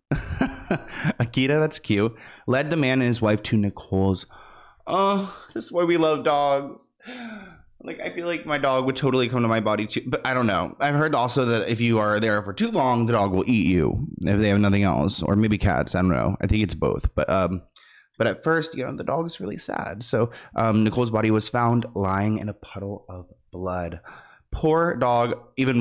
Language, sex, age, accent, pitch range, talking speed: English, male, 20-39, American, 110-145 Hz, 215 wpm